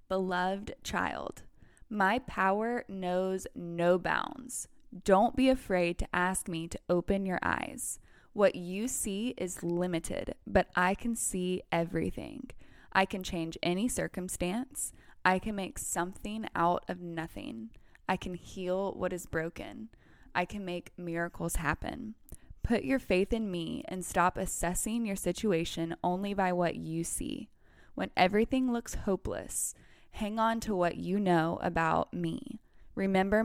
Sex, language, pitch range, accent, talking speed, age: female, English, 175-205 Hz, American, 140 wpm, 20-39